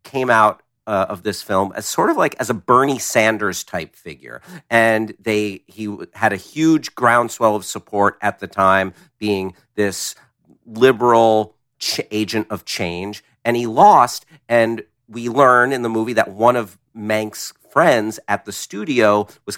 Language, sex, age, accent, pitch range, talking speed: English, male, 50-69, American, 105-125 Hz, 160 wpm